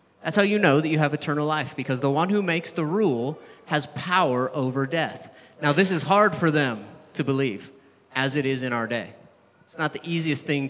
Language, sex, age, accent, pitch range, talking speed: English, male, 30-49, American, 130-170 Hz, 220 wpm